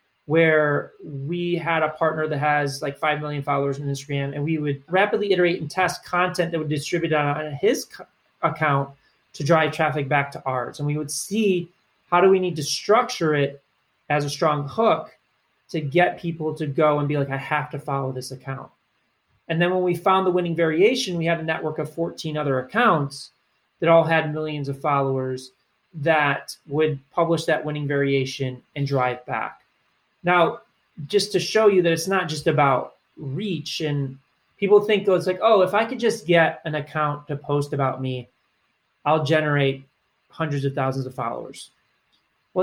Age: 30-49